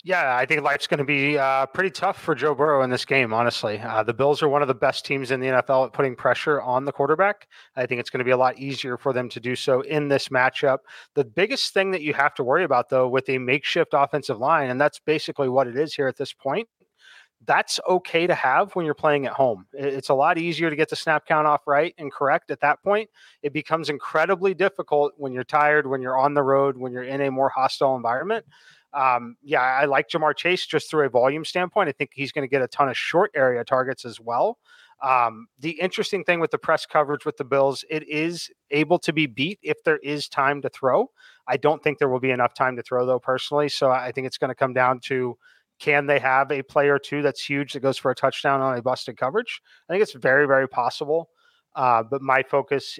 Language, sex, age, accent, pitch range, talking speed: English, male, 30-49, American, 130-155 Hz, 245 wpm